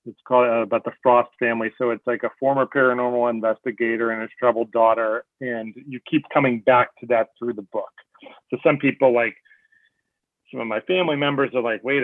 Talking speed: 200 wpm